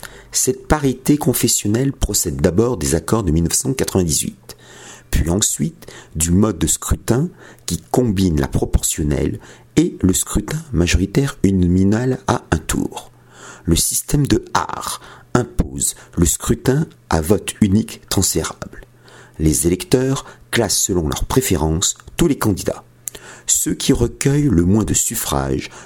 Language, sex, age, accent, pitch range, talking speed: French, male, 50-69, French, 80-120 Hz, 125 wpm